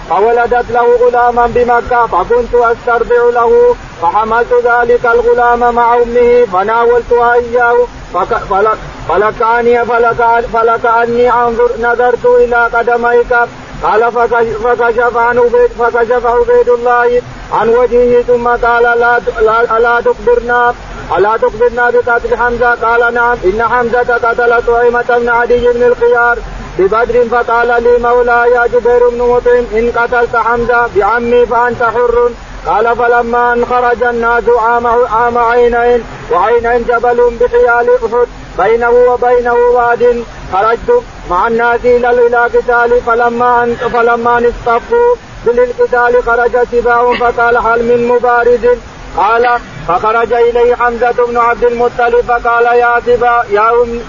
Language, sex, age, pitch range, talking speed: Arabic, male, 40-59, 235-245 Hz, 125 wpm